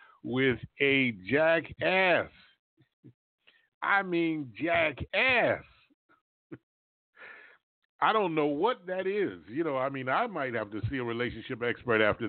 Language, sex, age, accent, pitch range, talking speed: English, male, 50-69, American, 130-195 Hz, 120 wpm